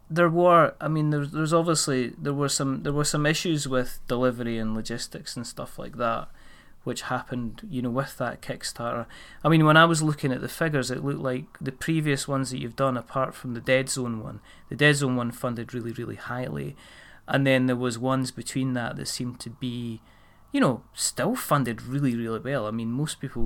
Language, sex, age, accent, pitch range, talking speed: English, male, 30-49, British, 120-140 Hz, 210 wpm